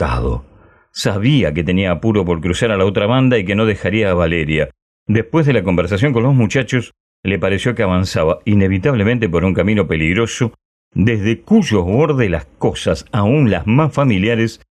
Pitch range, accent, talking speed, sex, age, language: 80-115 Hz, Argentinian, 165 wpm, male, 40-59, Spanish